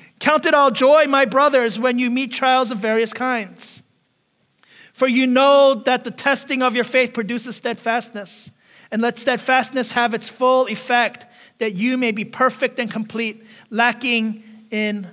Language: English